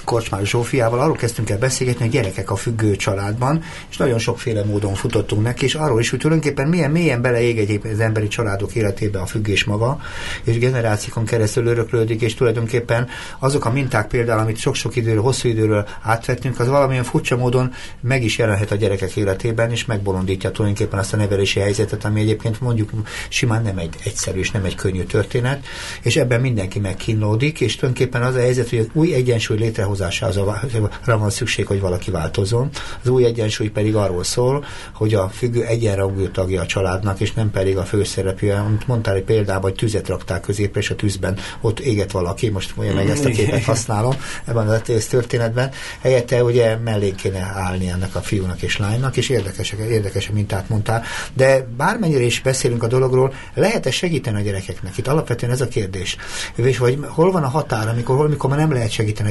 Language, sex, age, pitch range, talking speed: Hungarian, male, 60-79, 100-125 Hz, 185 wpm